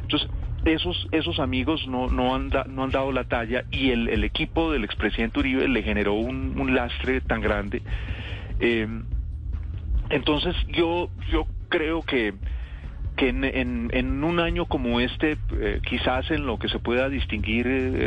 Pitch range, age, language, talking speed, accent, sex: 95-120 Hz, 40-59, Spanish, 165 wpm, Colombian, male